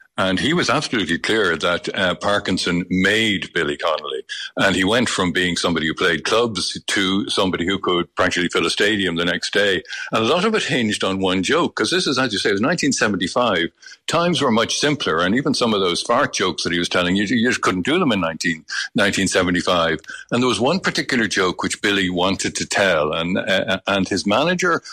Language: English